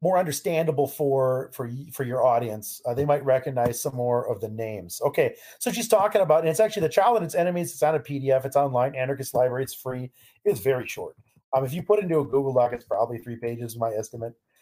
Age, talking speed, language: 40-59, 230 wpm, English